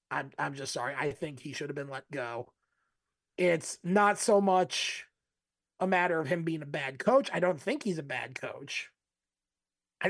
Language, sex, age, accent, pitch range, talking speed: English, male, 30-49, American, 145-180 Hz, 190 wpm